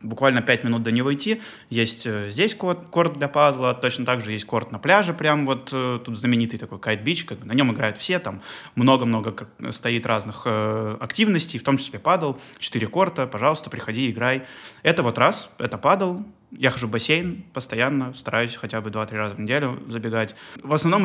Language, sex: Russian, male